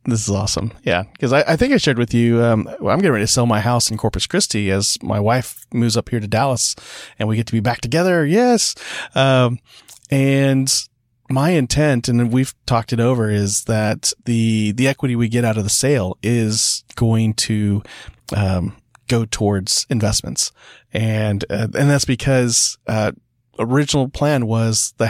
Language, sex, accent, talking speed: English, male, American, 185 wpm